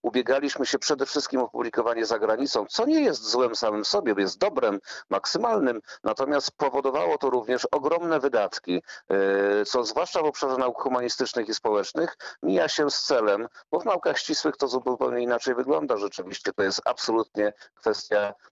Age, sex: 50-69, male